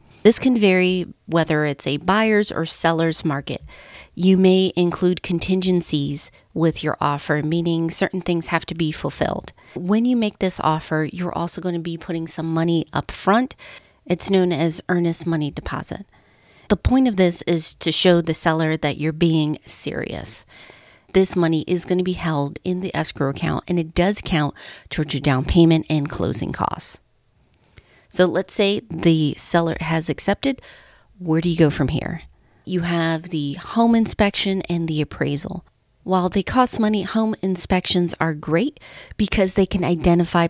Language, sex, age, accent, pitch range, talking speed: English, female, 30-49, American, 155-185 Hz, 165 wpm